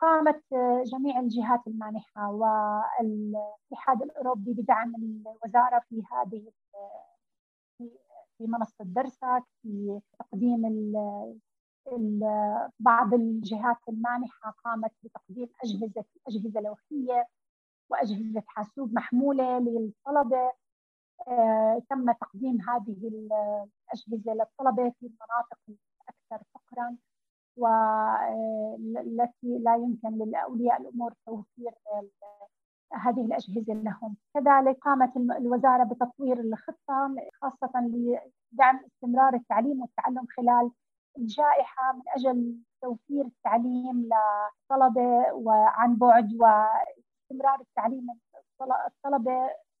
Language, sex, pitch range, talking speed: Arabic, female, 220-255 Hz, 80 wpm